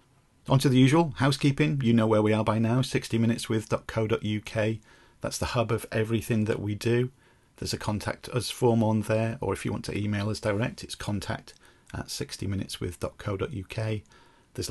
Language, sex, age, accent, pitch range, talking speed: English, male, 40-59, British, 105-120 Hz, 165 wpm